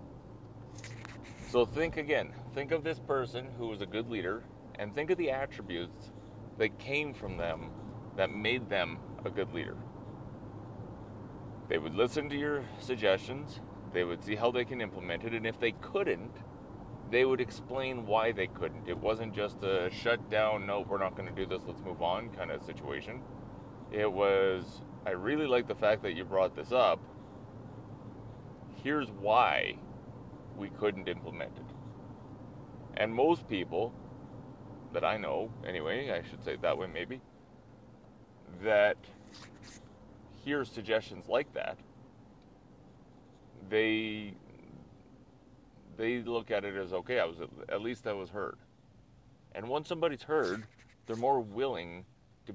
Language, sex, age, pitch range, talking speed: English, male, 30-49, 105-125 Hz, 145 wpm